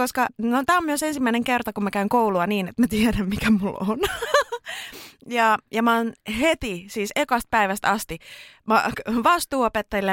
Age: 20-39